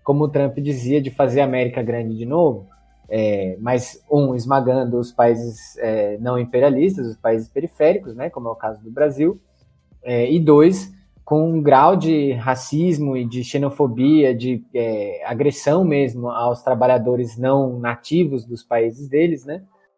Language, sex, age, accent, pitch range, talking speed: Portuguese, male, 20-39, Brazilian, 115-150 Hz, 160 wpm